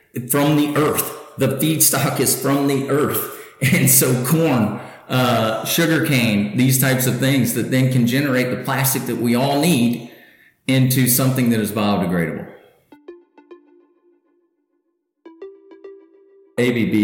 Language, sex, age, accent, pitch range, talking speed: English, male, 40-59, American, 100-130 Hz, 125 wpm